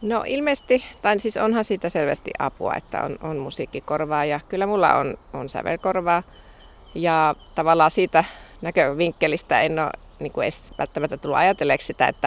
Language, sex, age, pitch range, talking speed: Finnish, female, 30-49, 150-200 Hz, 150 wpm